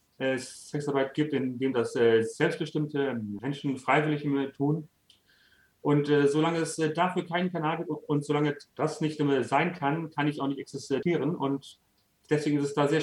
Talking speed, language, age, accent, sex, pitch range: 160 wpm, German, 30-49, German, male, 130-155 Hz